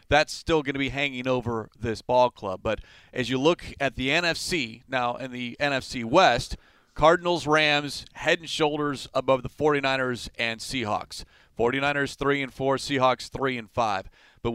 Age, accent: 30-49, American